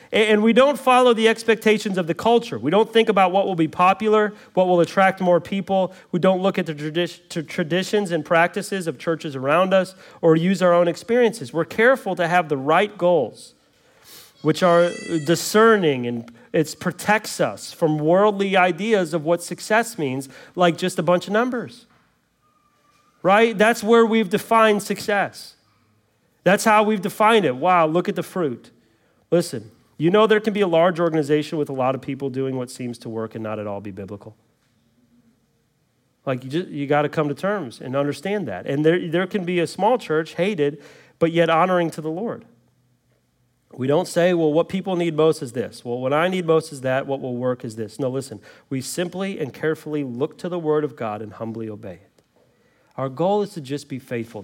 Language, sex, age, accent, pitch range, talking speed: English, male, 40-59, American, 145-195 Hz, 195 wpm